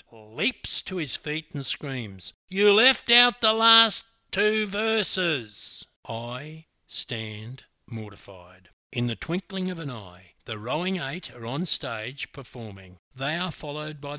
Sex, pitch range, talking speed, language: male, 105-150 Hz, 140 wpm, English